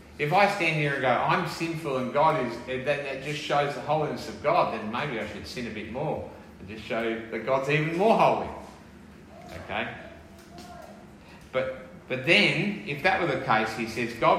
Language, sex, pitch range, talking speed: English, male, 110-150 Hz, 190 wpm